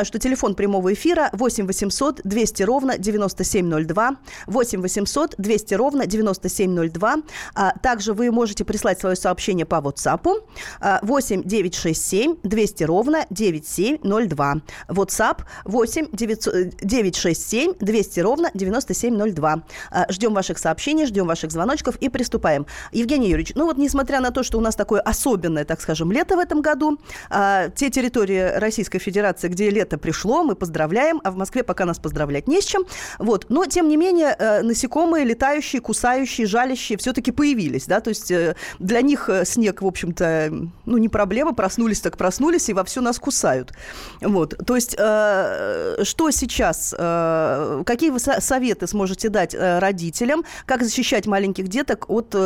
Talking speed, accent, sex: 140 wpm, native, female